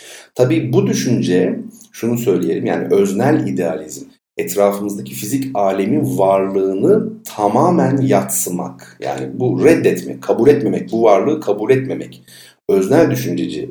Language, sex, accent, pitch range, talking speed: Turkish, male, native, 90-135 Hz, 110 wpm